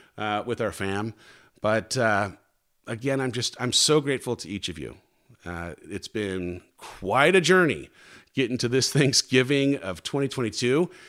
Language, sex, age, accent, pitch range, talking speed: English, male, 40-59, American, 100-135 Hz, 150 wpm